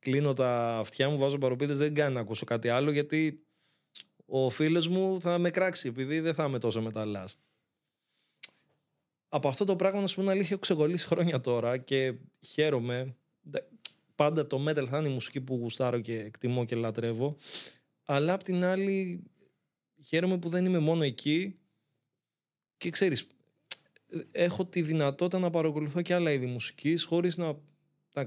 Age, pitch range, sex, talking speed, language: 20-39, 125-165 Hz, male, 160 wpm, Greek